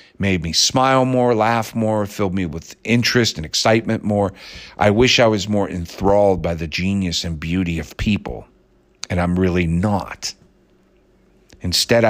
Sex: male